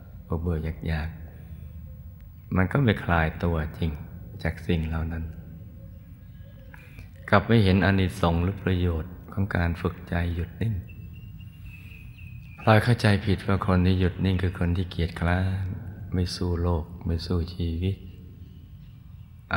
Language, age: Thai, 20-39